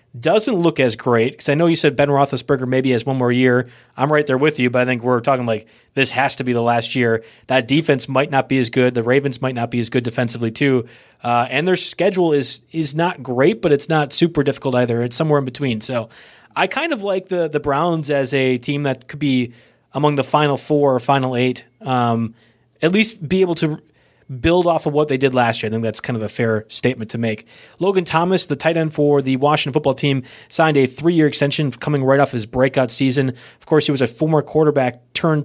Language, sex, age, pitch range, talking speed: English, male, 30-49, 125-155 Hz, 240 wpm